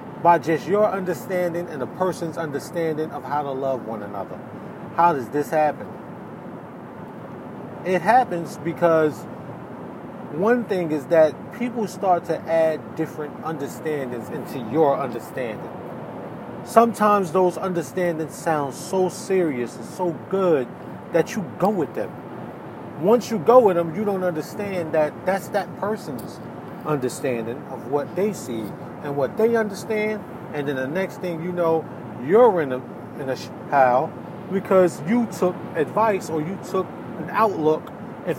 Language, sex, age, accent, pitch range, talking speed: English, male, 30-49, American, 155-195 Hz, 145 wpm